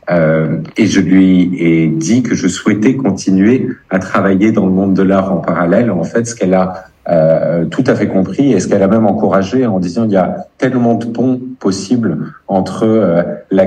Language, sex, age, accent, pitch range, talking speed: French, male, 50-69, French, 100-120 Hz, 200 wpm